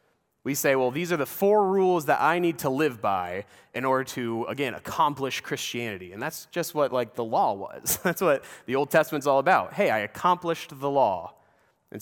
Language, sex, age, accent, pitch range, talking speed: English, male, 30-49, American, 130-190 Hz, 205 wpm